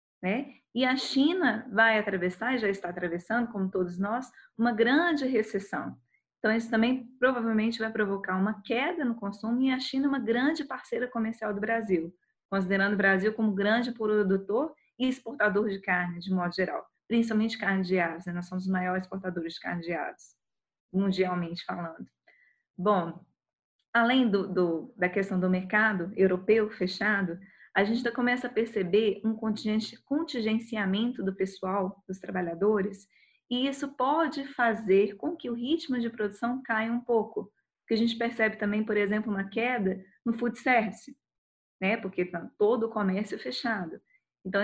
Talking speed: 160 wpm